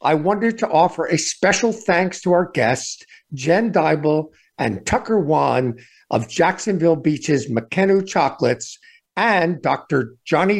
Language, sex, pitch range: English, male, 150-210 Hz